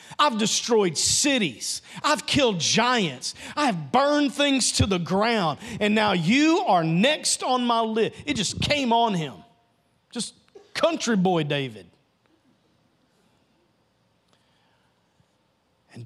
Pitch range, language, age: 165-270 Hz, English, 40-59